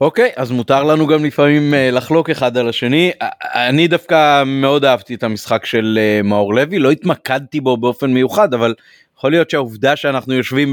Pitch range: 130-165 Hz